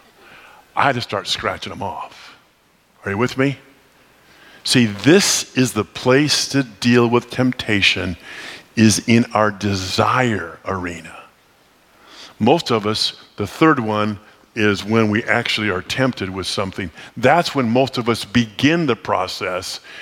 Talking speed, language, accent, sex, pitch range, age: 140 wpm, English, American, male, 105-140 Hz, 50-69